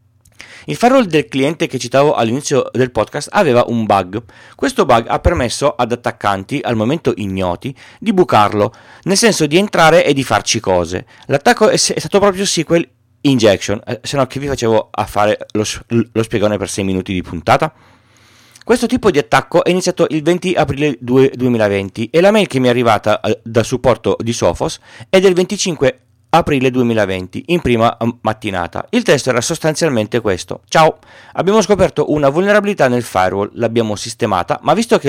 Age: 40-59